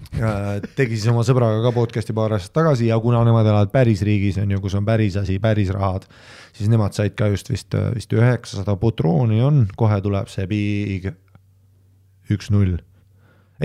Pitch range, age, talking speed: 100-120 Hz, 30-49, 170 wpm